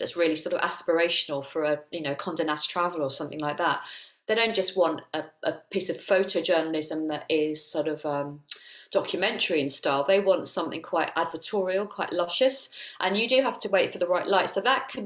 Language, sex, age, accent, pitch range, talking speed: English, female, 40-59, British, 160-200 Hz, 205 wpm